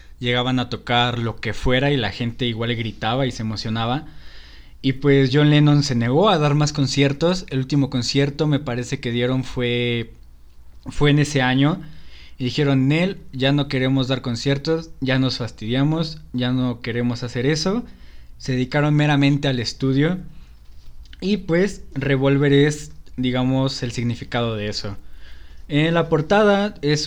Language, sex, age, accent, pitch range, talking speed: Spanish, male, 20-39, Mexican, 120-145 Hz, 155 wpm